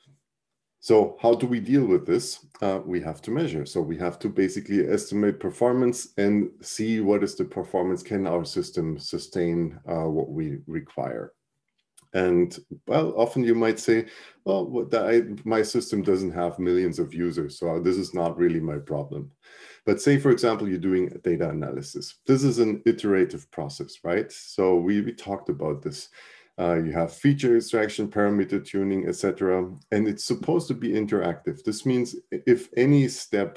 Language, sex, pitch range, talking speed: English, male, 90-115 Hz, 165 wpm